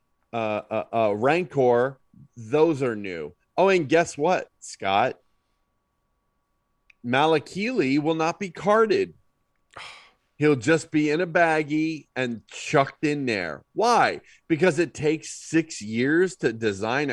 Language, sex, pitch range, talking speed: English, male, 135-175 Hz, 125 wpm